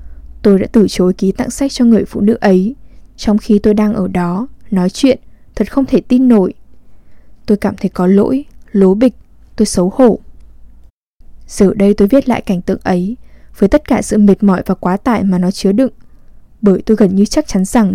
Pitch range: 185-235 Hz